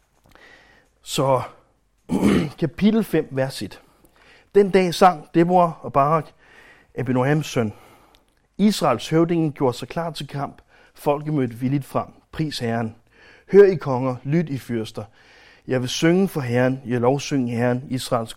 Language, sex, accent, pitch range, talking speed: Danish, male, native, 125-165 Hz, 130 wpm